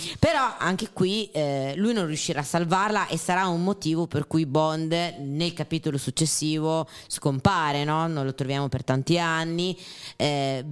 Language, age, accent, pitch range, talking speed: Italian, 20-39, native, 135-165 Hz, 150 wpm